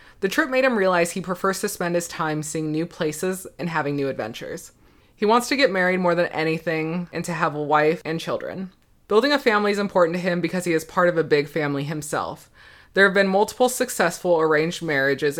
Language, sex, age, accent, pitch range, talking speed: English, female, 20-39, American, 155-195 Hz, 220 wpm